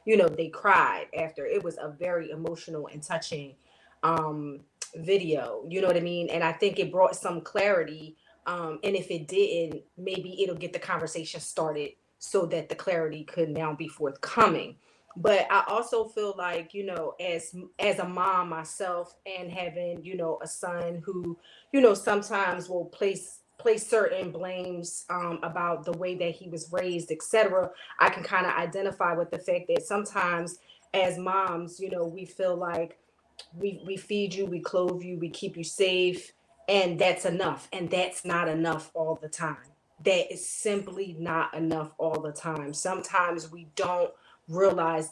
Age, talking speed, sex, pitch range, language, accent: 30-49, 175 wpm, female, 165-190 Hz, English, American